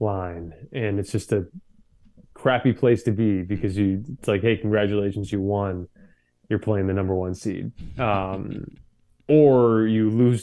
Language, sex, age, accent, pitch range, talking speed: English, male, 20-39, American, 100-125 Hz, 155 wpm